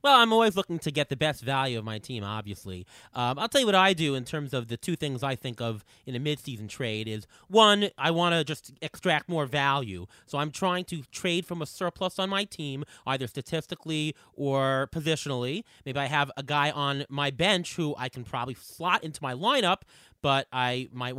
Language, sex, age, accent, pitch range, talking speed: English, male, 30-49, American, 130-185 Hz, 215 wpm